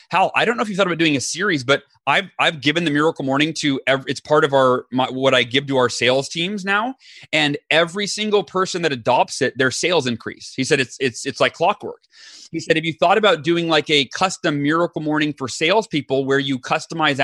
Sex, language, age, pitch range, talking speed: male, English, 30-49, 135-165 Hz, 235 wpm